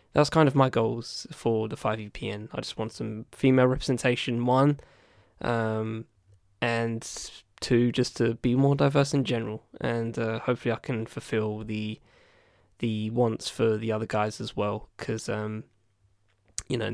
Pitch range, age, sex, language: 110-125 Hz, 10-29, male, English